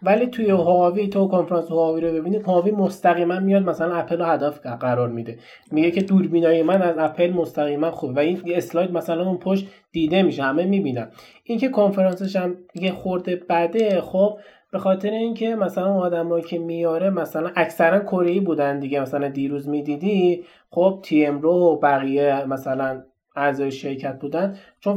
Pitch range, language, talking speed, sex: 145-190 Hz, Persian, 170 wpm, male